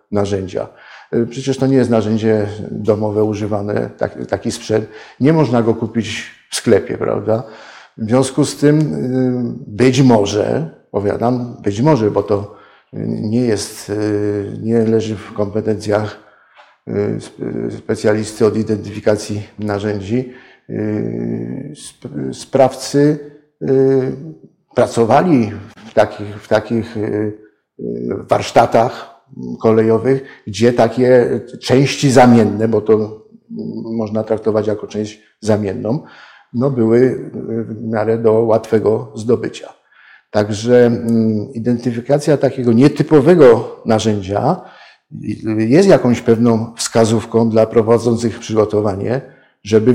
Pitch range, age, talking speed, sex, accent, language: 105-125 Hz, 50-69, 90 wpm, male, native, Polish